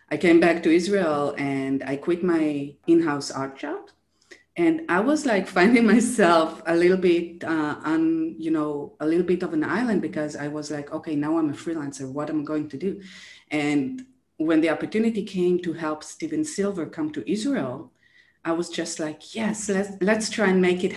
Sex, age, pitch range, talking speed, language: female, 30-49, 150-215 Hz, 195 wpm, English